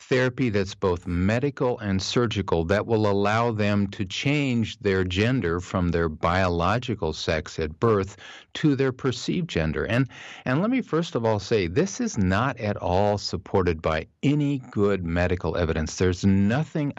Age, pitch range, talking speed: 50-69, 95-135 Hz, 160 wpm